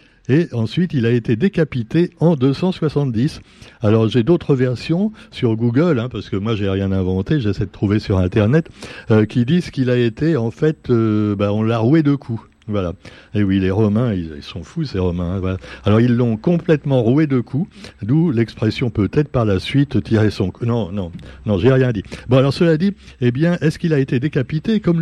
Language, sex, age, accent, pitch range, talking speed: French, male, 60-79, French, 110-155 Hz, 210 wpm